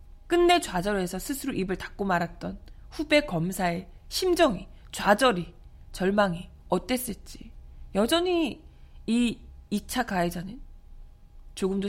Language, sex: Korean, female